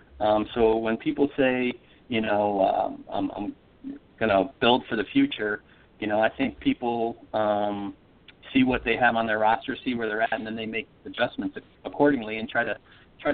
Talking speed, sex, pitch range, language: 190 wpm, male, 110-130 Hz, English